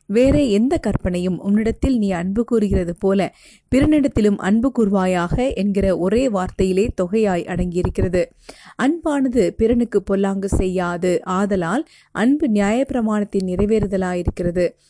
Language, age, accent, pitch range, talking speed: Tamil, 30-49, native, 185-230 Hz, 90 wpm